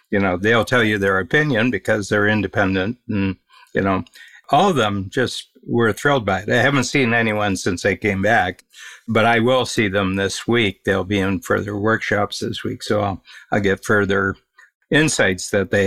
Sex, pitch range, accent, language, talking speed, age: male, 100-115 Hz, American, English, 195 wpm, 60-79